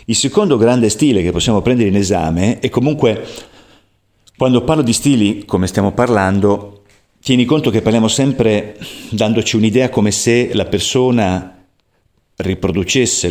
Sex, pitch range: male, 95-120 Hz